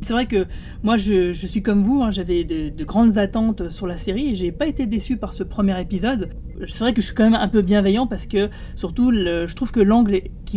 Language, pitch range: French, 185-230 Hz